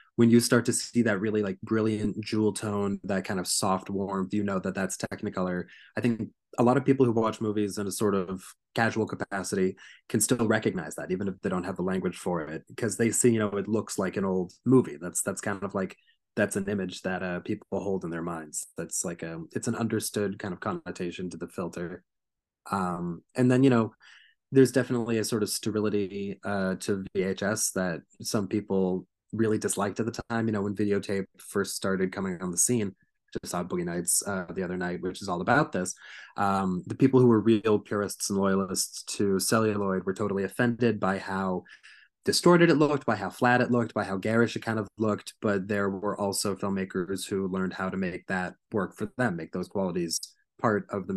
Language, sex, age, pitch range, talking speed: English, male, 20-39, 95-115 Hz, 215 wpm